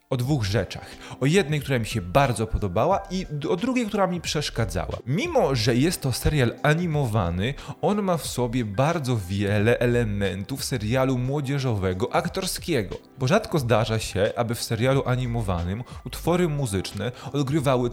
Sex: male